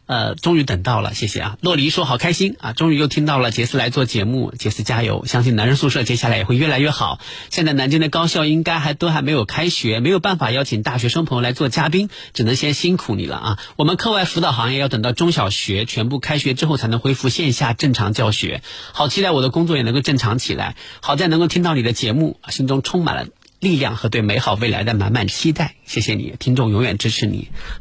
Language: Chinese